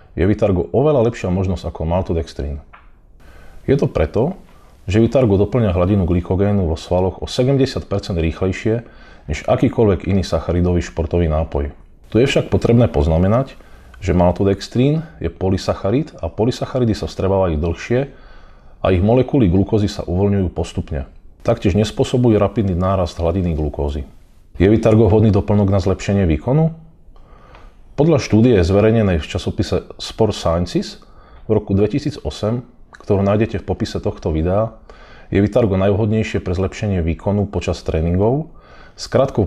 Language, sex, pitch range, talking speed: Slovak, male, 85-110 Hz, 130 wpm